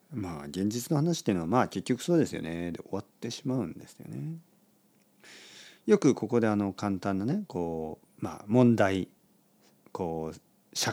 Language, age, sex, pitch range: Japanese, 40-59, male, 100-155 Hz